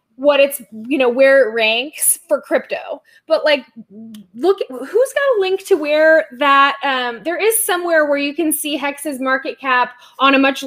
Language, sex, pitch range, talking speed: English, female, 245-305 Hz, 185 wpm